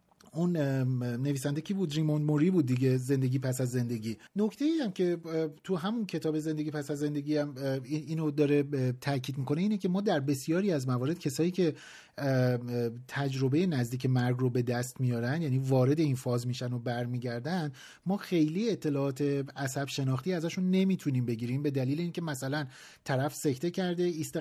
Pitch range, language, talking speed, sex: 135-170 Hz, Persian, 160 wpm, male